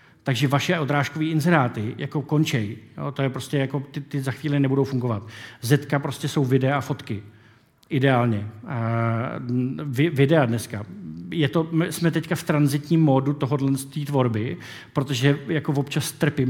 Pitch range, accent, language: 130-150 Hz, native, Czech